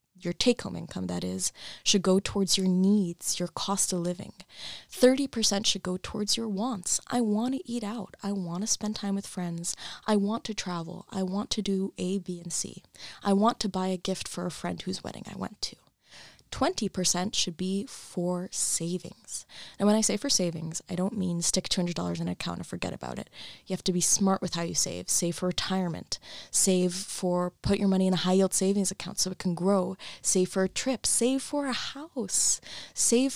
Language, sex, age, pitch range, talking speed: English, female, 20-39, 180-220 Hz, 210 wpm